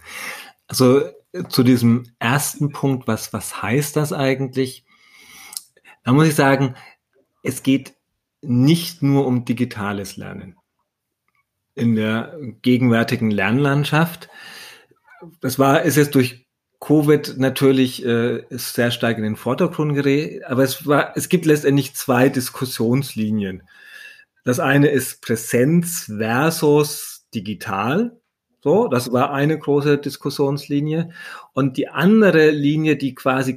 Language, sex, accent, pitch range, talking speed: German, male, German, 125-155 Hz, 115 wpm